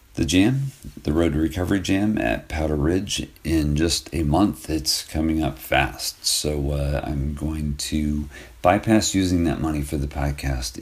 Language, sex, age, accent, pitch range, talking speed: English, male, 50-69, American, 70-90 Hz, 165 wpm